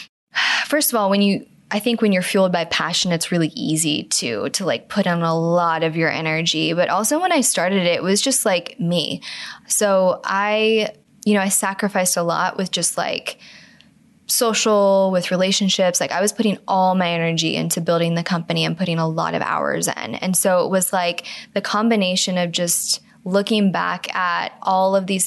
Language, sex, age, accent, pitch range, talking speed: English, female, 10-29, American, 175-205 Hz, 195 wpm